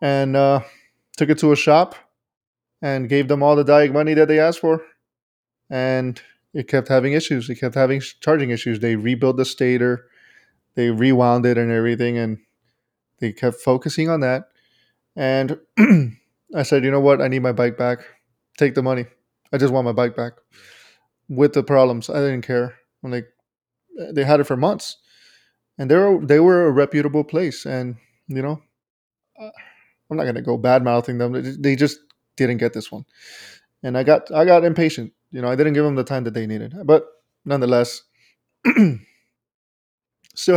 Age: 20-39